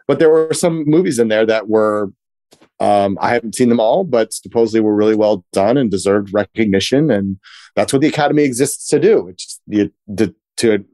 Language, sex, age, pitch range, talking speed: English, male, 30-49, 100-130 Hz, 185 wpm